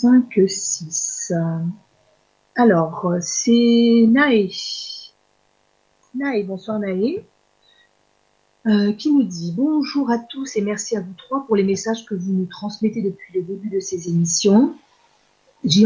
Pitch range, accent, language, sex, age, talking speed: 185-230 Hz, French, French, female, 50-69, 130 wpm